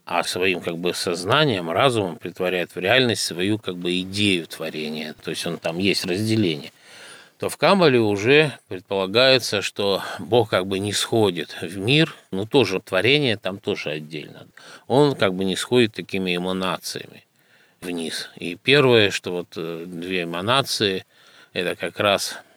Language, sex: Russian, male